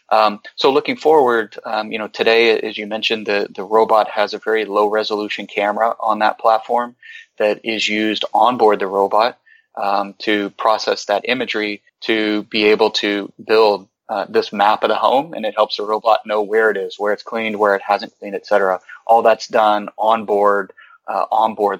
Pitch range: 105-110 Hz